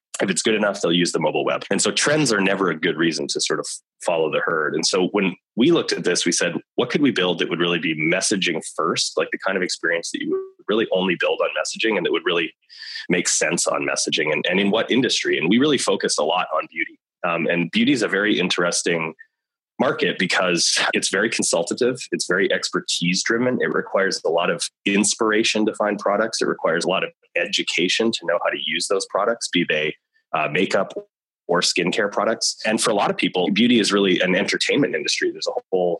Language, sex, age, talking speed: English, male, 20-39, 225 wpm